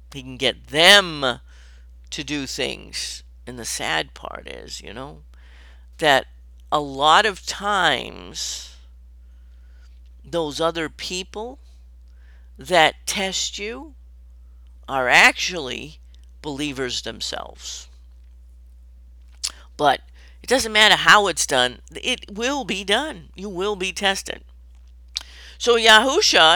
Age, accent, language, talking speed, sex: 50-69, American, English, 105 wpm, female